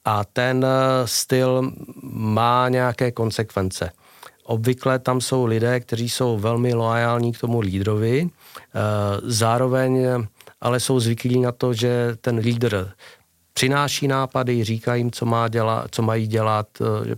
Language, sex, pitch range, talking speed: Czech, male, 110-125 Hz, 130 wpm